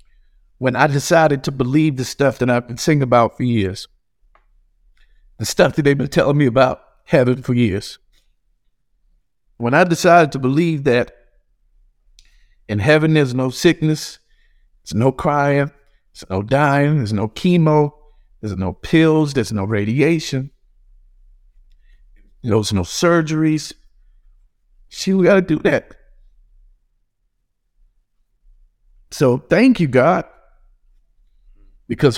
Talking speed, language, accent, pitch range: 120 wpm, English, American, 115-165 Hz